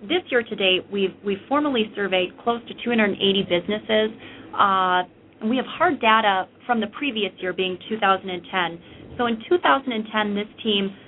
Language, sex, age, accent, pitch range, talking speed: English, female, 30-49, American, 195-240 Hz, 160 wpm